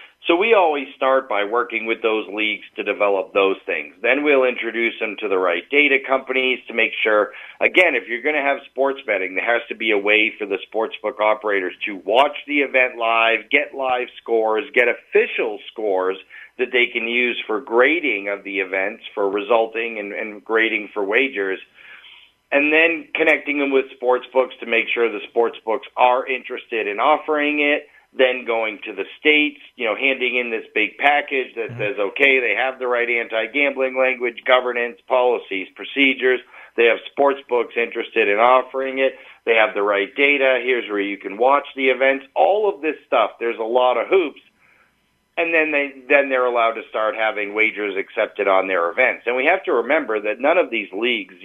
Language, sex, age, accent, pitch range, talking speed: English, male, 40-59, American, 110-140 Hz, 190 wpm